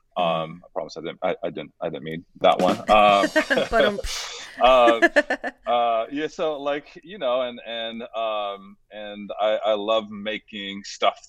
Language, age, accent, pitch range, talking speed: English, 30-49, American, 85-110 Hz, 155 wpm